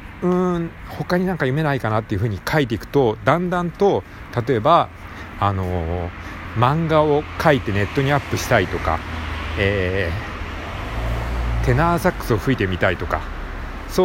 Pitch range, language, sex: 90-140 Hz, Japanese, male